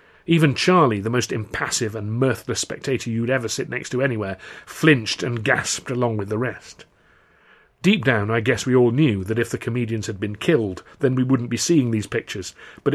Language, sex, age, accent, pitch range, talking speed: English, male, 40-59, British, 110-135 Hz, 200 wpm